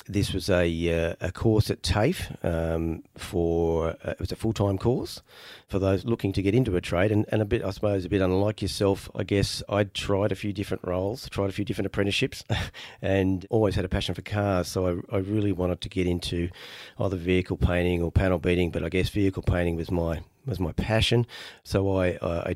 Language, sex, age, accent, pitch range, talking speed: English, male, 40-59, Australian, 90-110 Hz, 215 wpm